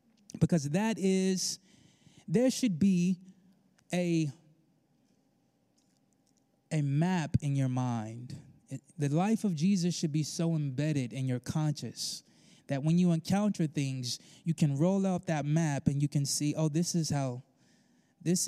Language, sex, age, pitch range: English, male, 20-39, 140-190 Hz